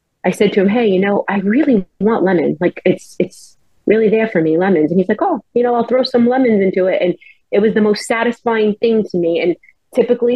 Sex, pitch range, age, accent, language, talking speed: female, 175-215 Hz, 30-49, American, English, 245 wpm